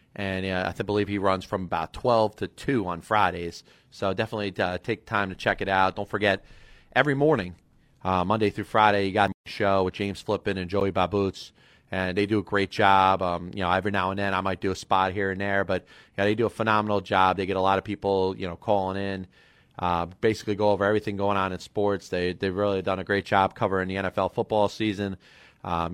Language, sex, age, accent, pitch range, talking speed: English, male, 30-49, American, 95-105 Hz, 230 wpm